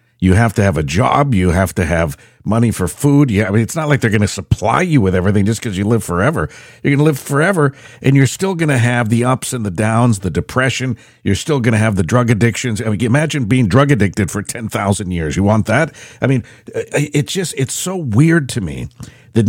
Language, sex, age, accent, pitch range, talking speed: English, male, 50-69, American, 95-135 Hz, 245 wpm